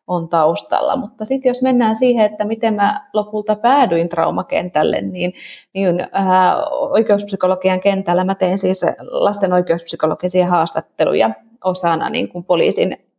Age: 30-49